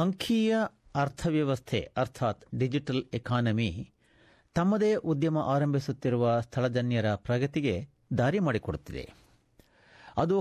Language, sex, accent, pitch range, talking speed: Kannada, male, native, 110-155 Hz, 75 wpm